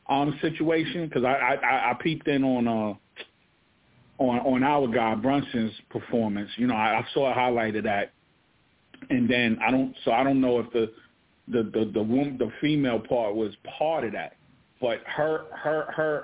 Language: English